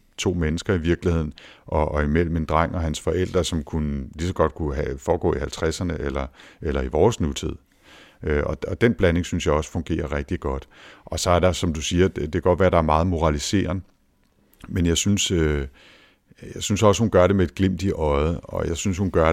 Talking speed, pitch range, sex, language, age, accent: 225 wpm, 75-90 Hz, male, Danish, 60-79, native